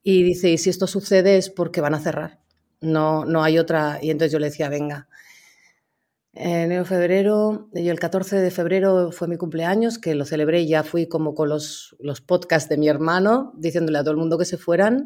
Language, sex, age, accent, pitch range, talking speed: Spanish, female, 30-49, Spanish, 155-180 Hz, 210 wpm